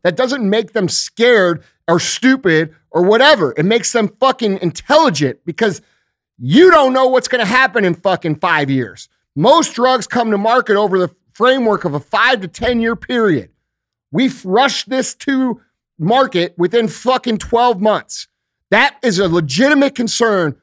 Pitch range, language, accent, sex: 180-250 Hz, English, American, male